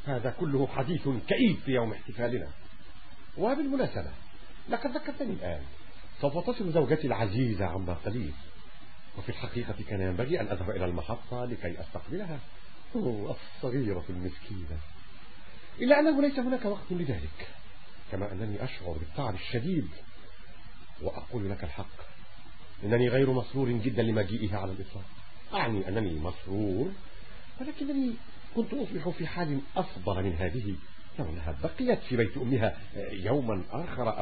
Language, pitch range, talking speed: Arabic, 100-160 Hz, 125 wpm